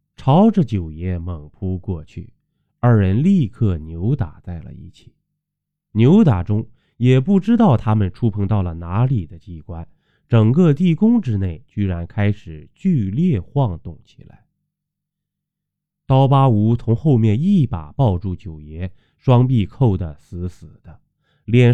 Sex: male